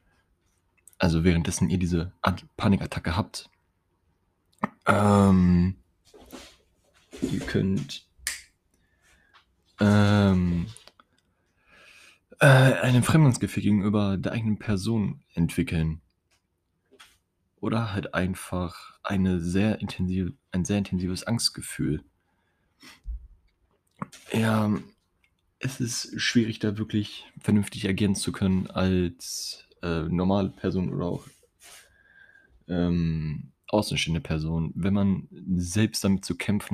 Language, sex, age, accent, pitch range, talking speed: German, male, 20-39, German, 85-100 Hz, 85 wpm